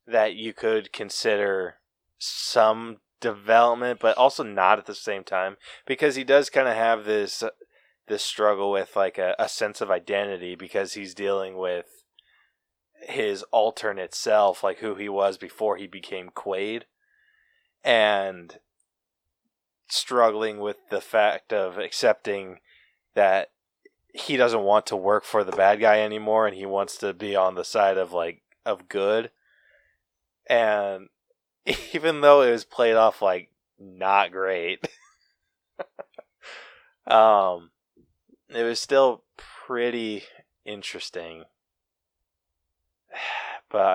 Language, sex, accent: English, male, American